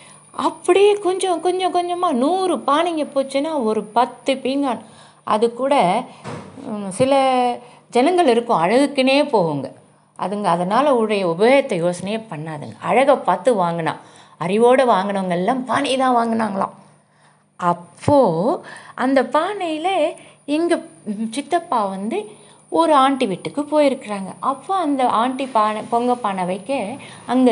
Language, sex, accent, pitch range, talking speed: Tamil, female, native, 190-280 Hz, 105 wpm